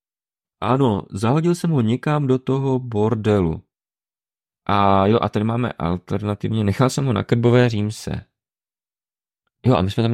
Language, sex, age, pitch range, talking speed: Czech, male, 30-49, 85-115 Hz, 150 wpm